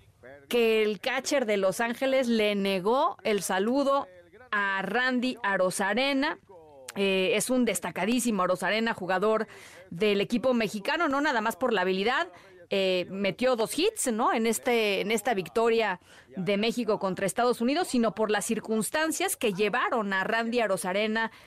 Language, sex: Spanish, female